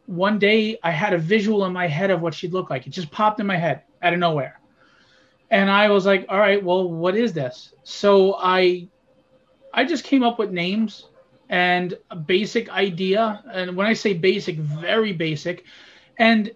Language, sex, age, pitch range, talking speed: English, male, 30-49, 170-200 Hz, 190 wpm